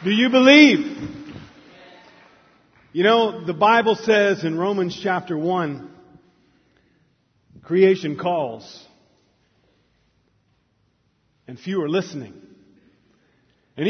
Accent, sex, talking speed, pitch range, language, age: American, male, 80 wpm, 180-235 Hz, English, 40-59